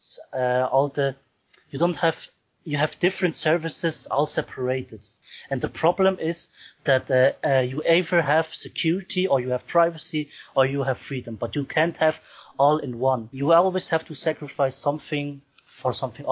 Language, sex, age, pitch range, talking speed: English, male, 30-49, 125-155 Hz, 170 wpm